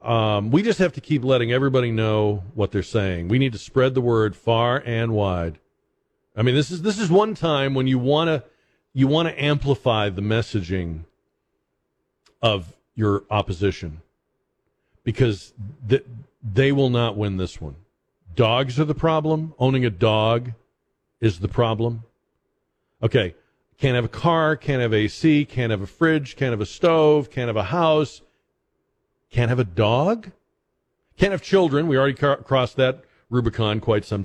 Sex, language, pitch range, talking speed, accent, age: male, English, 105-145 Hz, 170 wpm, American, 50-69